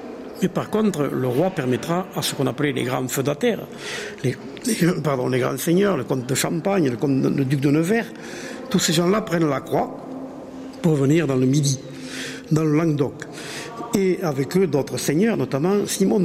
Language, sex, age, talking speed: French, male, 60-79, 185 wpm